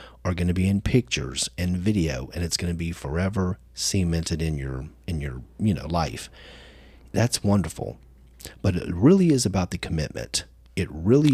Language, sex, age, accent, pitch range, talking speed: English, male, 40-59, American, 80-105 Hz, 175 wpm